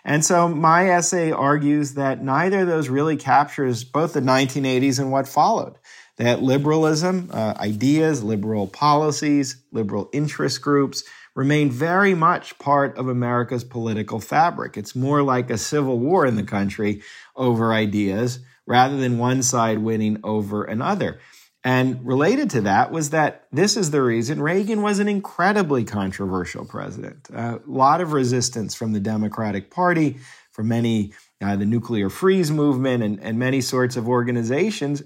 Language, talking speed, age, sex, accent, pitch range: English, 150 wpm, 40-59, male, American, 115-150 Hz